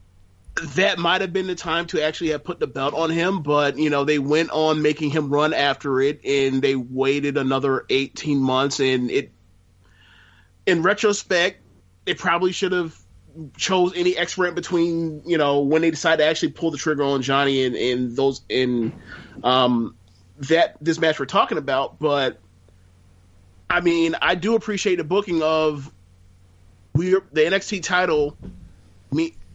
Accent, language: American, English